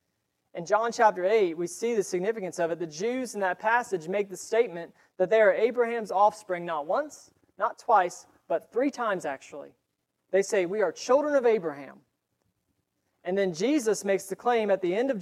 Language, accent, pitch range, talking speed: English, American, 180-230 Hz, 190 wpm